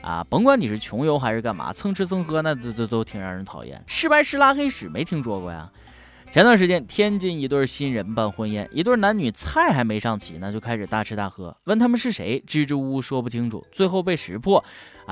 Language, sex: Chinese, male